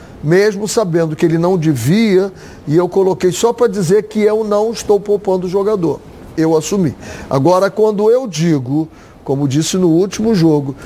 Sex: male